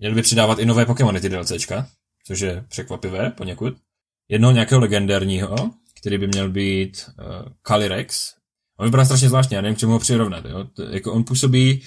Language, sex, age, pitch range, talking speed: Czech, male, 20-39, 100-120 Hz, 180 wpm